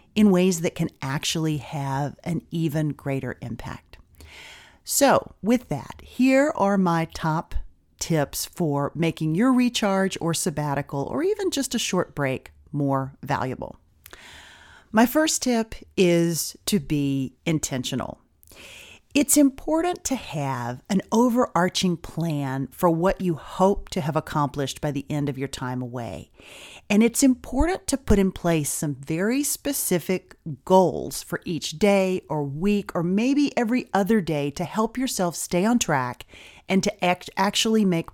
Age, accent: 40-59, American